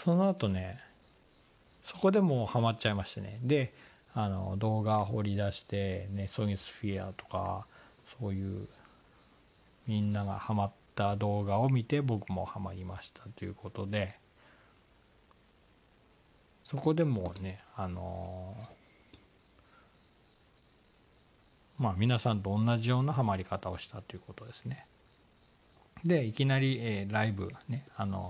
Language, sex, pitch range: Japanese, male, 95-125 Hz